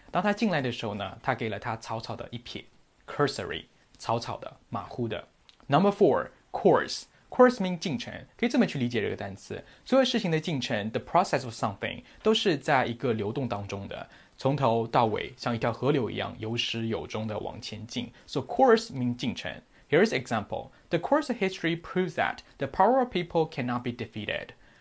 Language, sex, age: Chinese, male, 20-39